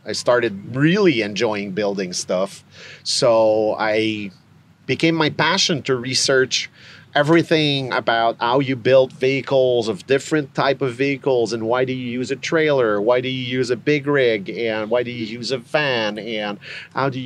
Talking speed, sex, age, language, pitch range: 165 wpm, male, 40-59, English, 110-140 Hz